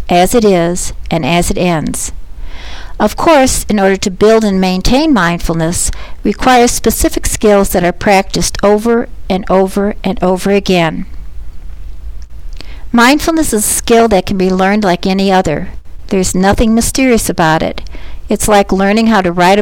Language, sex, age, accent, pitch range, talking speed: English, female, 60-79, American, 175-220 Hz, 155 wpm